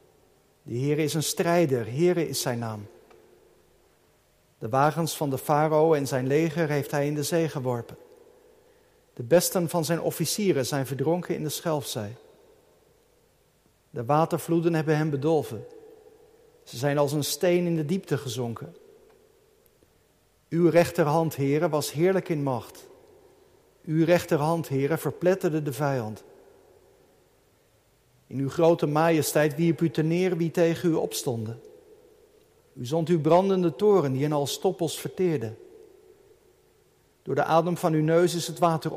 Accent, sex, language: Dutch, male, Dutch